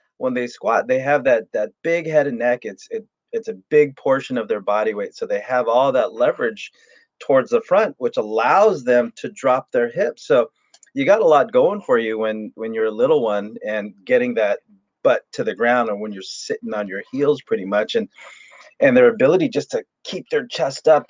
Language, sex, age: English, male, 30-49